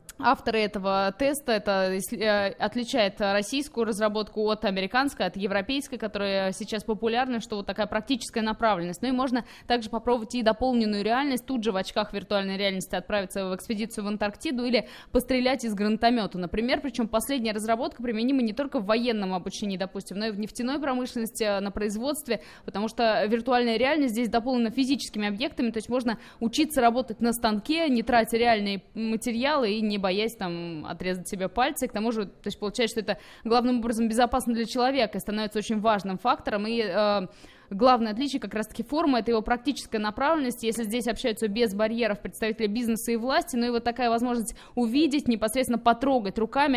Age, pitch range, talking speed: 20-39, 215-250 Hz, 170 wpm